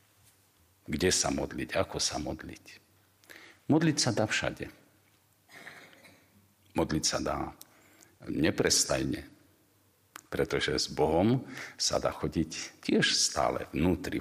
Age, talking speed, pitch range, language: 50-69, 95 wpm, 80-100 Hz, Slovak